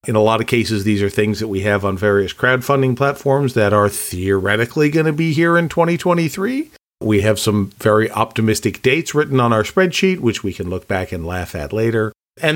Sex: male